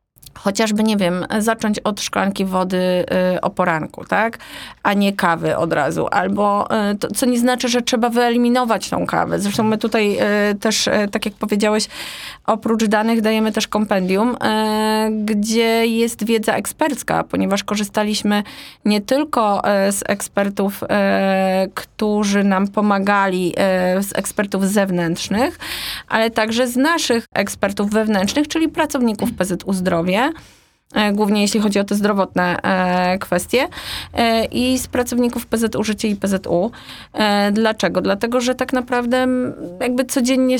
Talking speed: 125 wpm